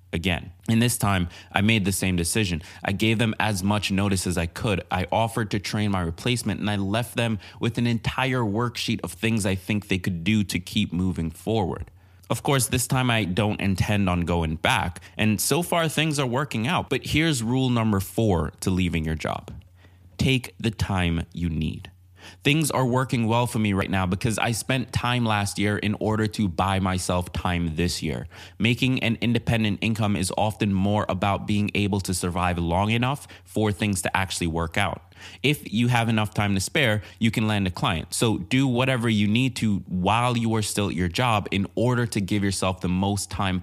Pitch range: 90-115 Hz